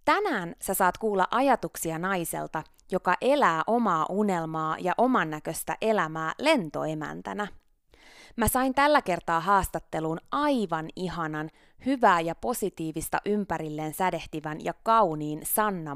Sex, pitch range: female, 160-225 Hz